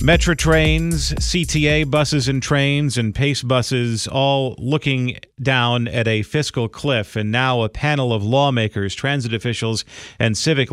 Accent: American